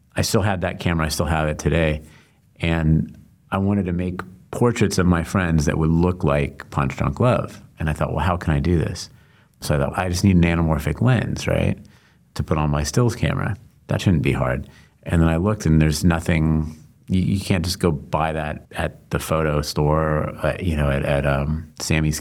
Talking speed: 215 wpm